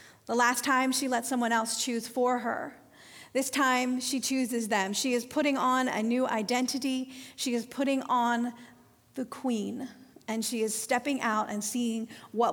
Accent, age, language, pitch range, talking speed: American, 40-59, English, 230-270 Hz, 170 wpm